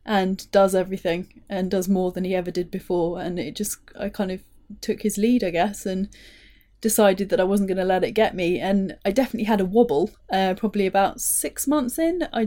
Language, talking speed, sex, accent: English, 220 wpm, female, British